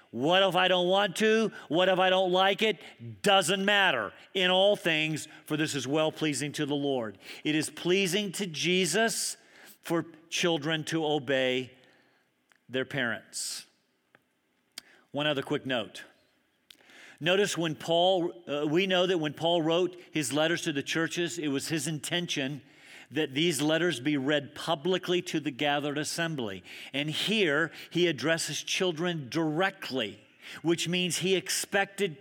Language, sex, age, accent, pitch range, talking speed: English, male, 50-69, American, 145-185 Hz, 145 wpm